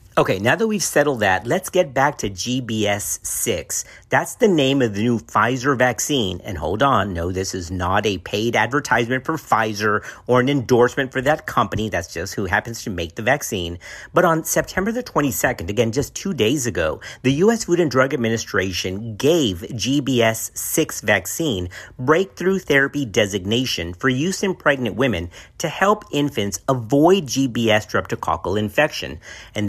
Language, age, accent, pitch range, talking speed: English, 50-69, American, 100-145 Hz, 160 wpm